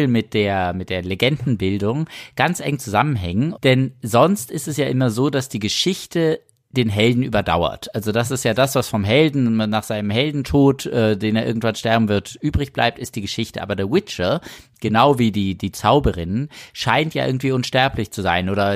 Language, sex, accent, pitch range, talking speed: German, male, German, 105-140 Hz, 180 wpm